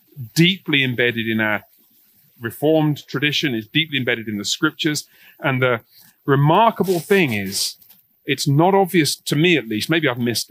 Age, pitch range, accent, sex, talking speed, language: 40-59, 115-160 Hz, British, male, 155 wpm, English